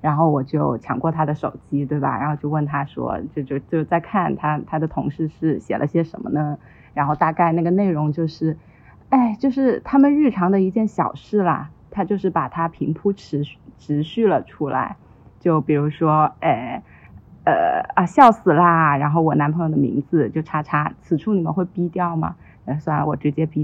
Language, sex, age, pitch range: Chinese, female, 20-39, 155-195 Hz